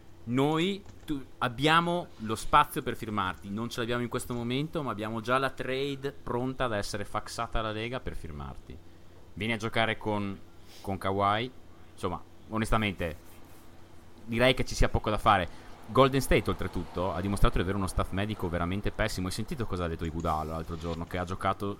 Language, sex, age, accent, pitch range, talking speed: Italian, male, 30-49, native, 85-115 Hz, 175 wpm